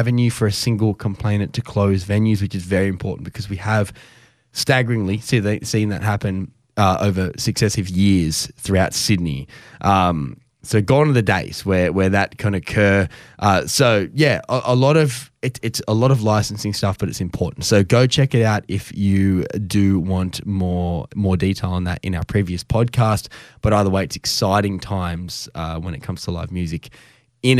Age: 10-29